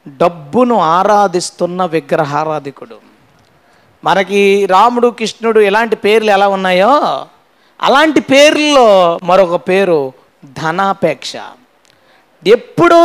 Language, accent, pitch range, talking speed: Telugu, native, 195-285 Hz, 75 wpm